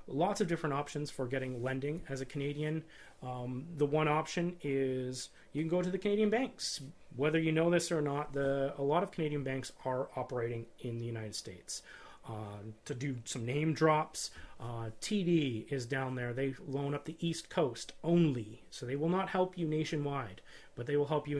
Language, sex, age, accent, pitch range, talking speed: English, male, 30-49, American, 130-160 Hz, 195 wpm